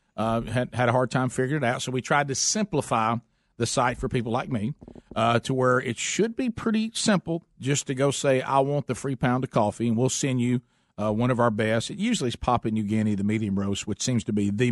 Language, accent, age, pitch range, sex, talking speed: English, American, 50-69, 115-135 Hz, male, 255 wpm